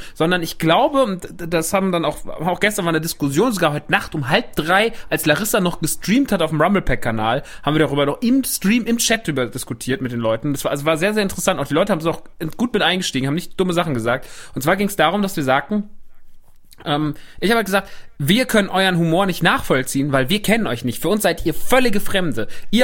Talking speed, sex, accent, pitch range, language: 240 wpm, male, German, 160-210 Hz, German